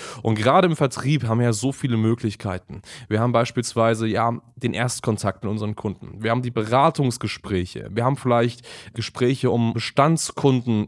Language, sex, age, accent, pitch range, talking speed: German, male, 20-39, German, 115-140 Hz, 160 wpm